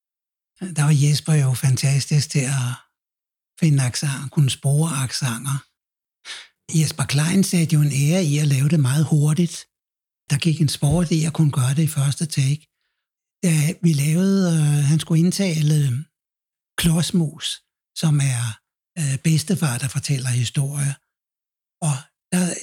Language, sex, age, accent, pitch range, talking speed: Danish, male, 60-79, native, 145-175 Hz, 140 wpm